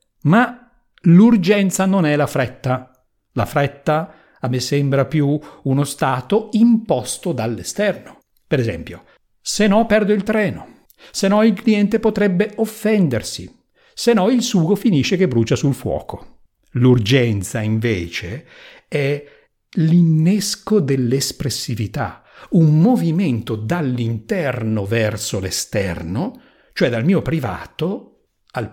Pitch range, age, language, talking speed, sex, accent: 125-190 Hz, 50-69, Italian, 110 wpm, male, native